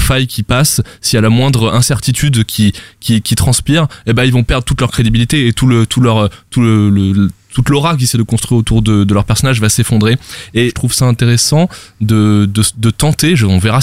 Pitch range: 100-125 Hz